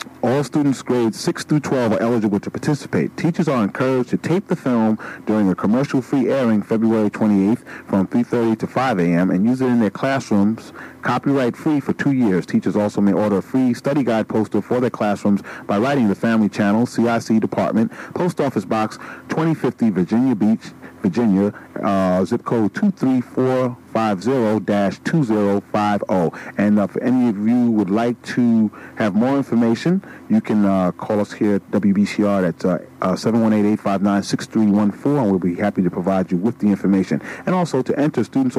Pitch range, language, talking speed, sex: 105-135 Hz, English, 165 wpm, male